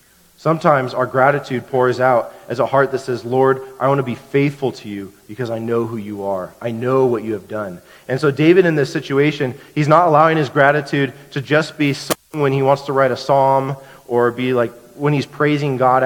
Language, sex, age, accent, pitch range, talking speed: English, male, 40-59, American, 125-155 Hz, 220 wpm